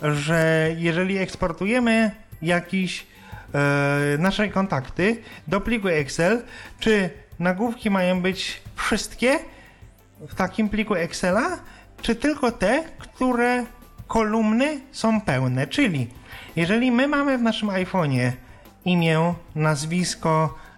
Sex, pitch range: male, 150-220 Hz